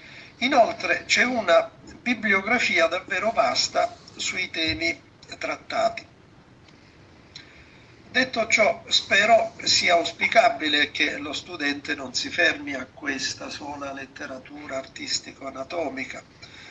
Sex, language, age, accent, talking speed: male, Italian, 50-69, native, 90 wpm